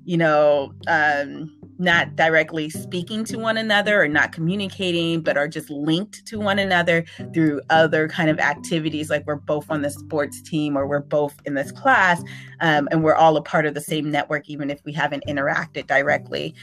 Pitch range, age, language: 155-180 Hz, 30-49, English